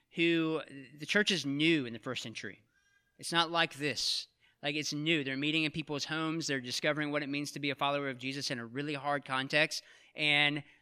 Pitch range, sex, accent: 140-175 Hz, male, American